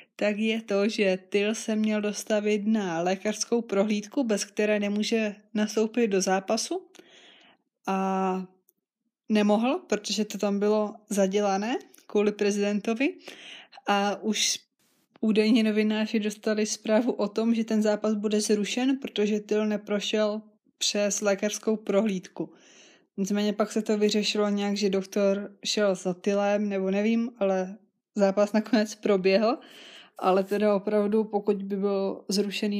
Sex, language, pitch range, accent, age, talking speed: female, Czech, 200-220 Hz, native, 20-39, 125 wpm